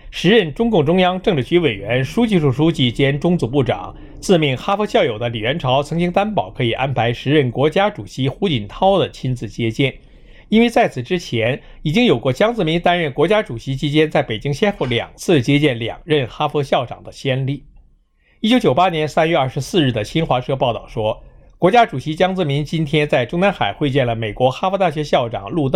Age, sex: 60-79, male